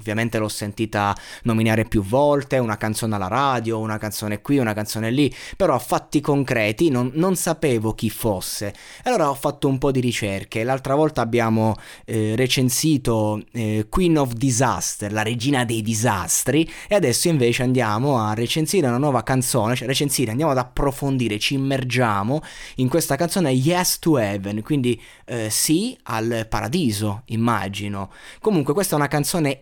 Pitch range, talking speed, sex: 110-145 Hz, 160 wpm, male